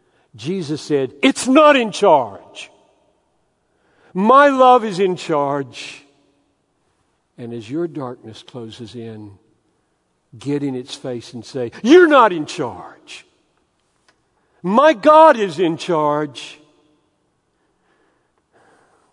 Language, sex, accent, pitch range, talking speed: English, male, American, 130-200 Hz, 100 wpm